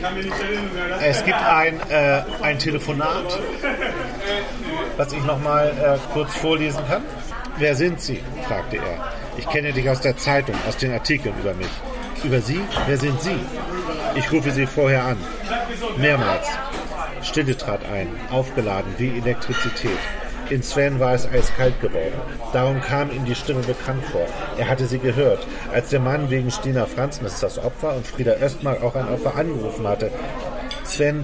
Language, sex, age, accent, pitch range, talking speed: German, male, 40-59, German, 120-140 Hz, 160 wpm